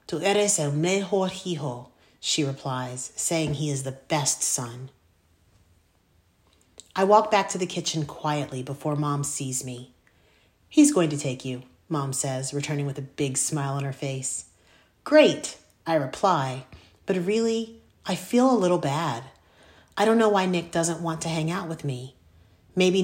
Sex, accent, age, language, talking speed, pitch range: female, American, 40-59, English, 160 wpm, 130-180 Hz